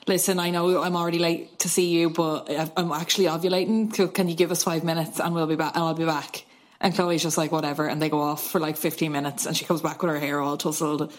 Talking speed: 270 wpm